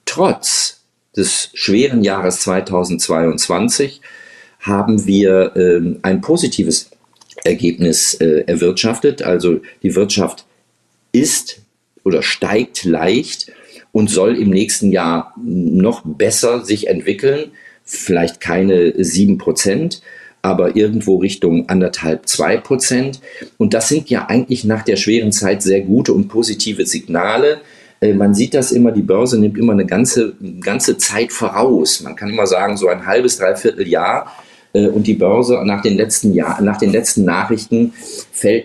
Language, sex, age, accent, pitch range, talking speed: German, male, 50-69, German, 95-120 Hz, 130 wpm